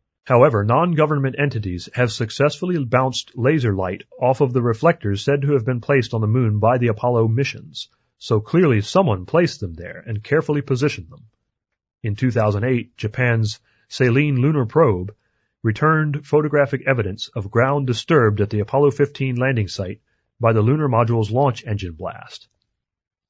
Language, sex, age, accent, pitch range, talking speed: English, male, 30-49, American, 110-140 Hz, 150 wpm